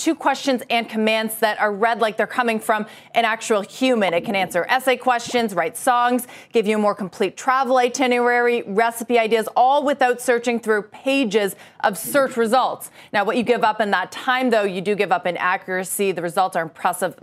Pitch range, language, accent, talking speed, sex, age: 200-255 Hz, English, American, 200 wpm, female, 30-49